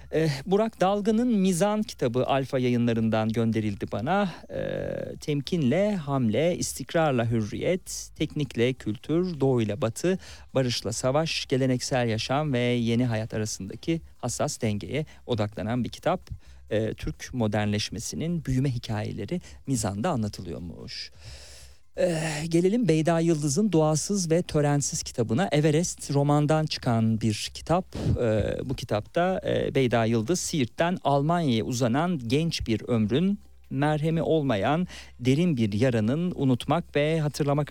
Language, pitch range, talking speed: Turkish, 115-155 Hz, 110 wpm